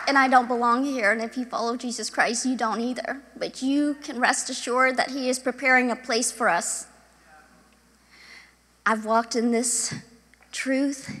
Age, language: 40-59, English